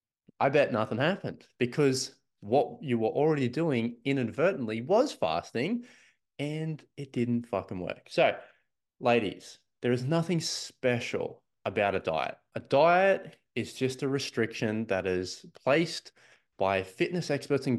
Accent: Australian